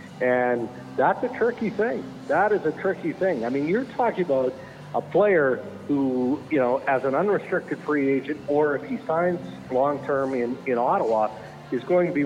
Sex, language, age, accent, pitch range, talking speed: male, English, 60-79, American, 130-175 Hz, 180 wpm